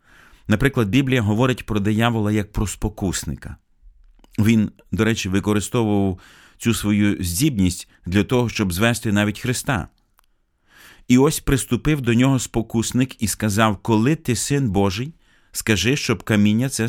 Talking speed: 130 wpm